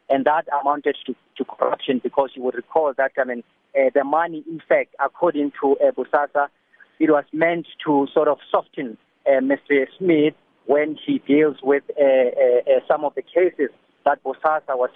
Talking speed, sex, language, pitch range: 180 wpm, male, English, 135-160 Hz